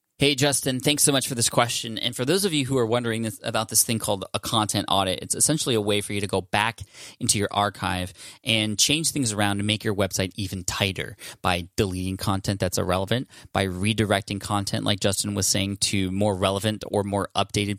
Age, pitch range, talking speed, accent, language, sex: 20-39, 100-120 Hz, 215 wpm, American, English, male